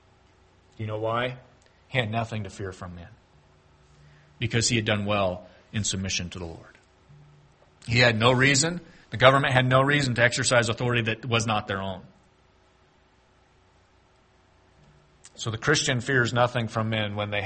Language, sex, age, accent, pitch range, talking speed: English, male, 30-49, American, 90-115 Hz, 160 wpm